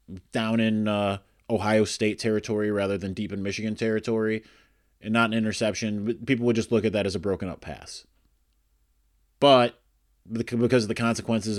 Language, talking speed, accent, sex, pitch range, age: English, 160 wpm, American, male, 100-125 Hz, 30-49